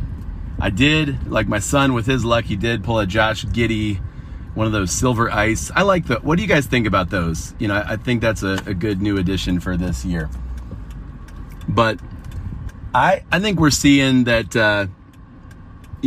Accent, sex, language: American, male, English